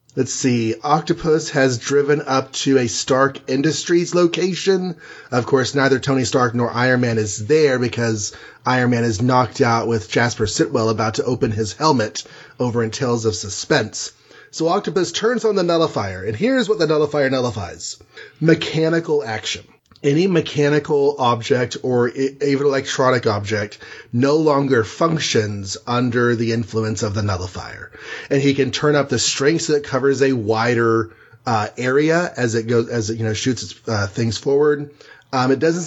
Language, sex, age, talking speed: English, male, 30-49, 165 wpm